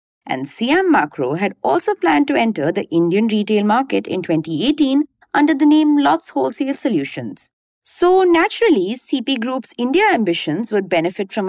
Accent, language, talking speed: Indian, English, 150 wpm